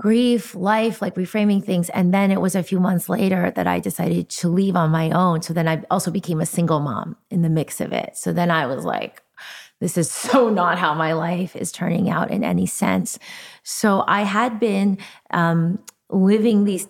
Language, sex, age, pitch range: English, female, 30-49, 165-195 Hz